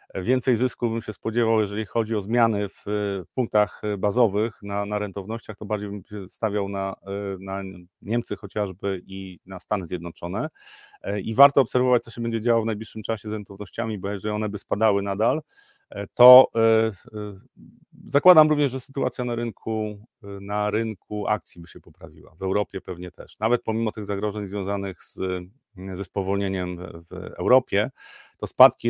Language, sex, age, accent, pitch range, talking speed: Polish, male, 40-59, native, 100-120 Hz, 160 wpm